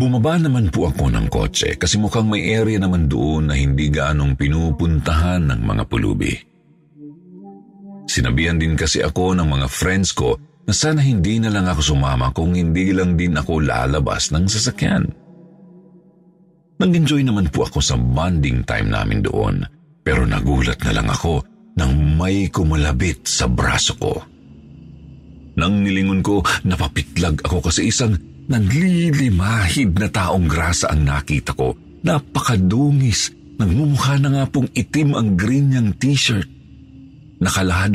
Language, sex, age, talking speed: Filipino, male, 50-69, 140 wpm